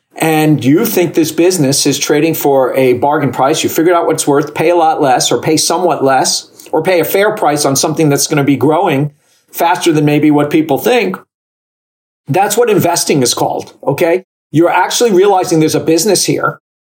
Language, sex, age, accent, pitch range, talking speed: English, male, 50-69, American, 130-165 Hz, 190 wpm